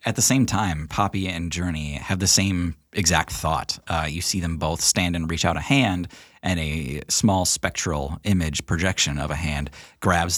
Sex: male